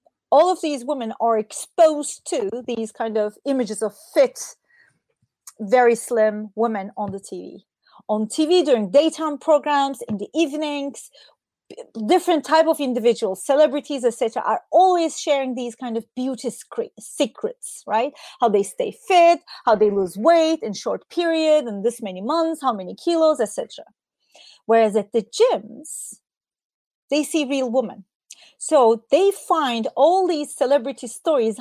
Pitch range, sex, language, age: 230-320 Hz, female, English, 30-49